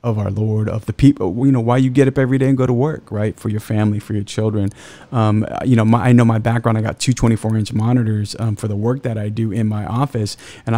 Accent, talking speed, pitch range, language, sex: American, 275 wpm, 110-130 Hz, English, male